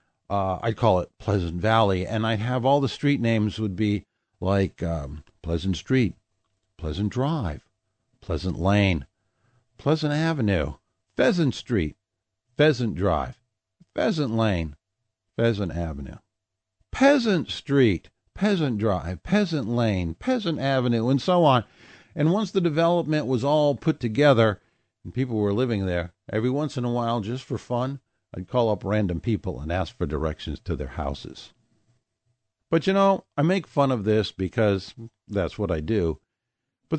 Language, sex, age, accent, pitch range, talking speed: English, male, 60-79, American, 95-140 Hz, 150 wpm